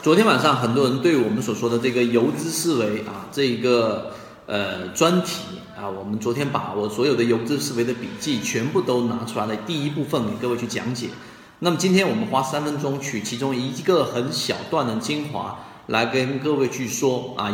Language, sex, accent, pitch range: Chinese, male, native, 115-165 Hz